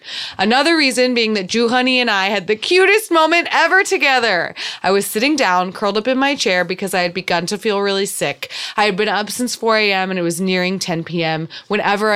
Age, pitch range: 20-39, 180-250 Hz